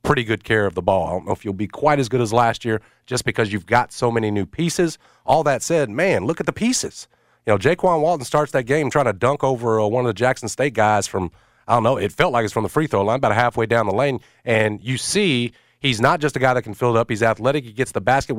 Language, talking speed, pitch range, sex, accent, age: English, 285 wpm, 110-135 Hz, male, American, 40-59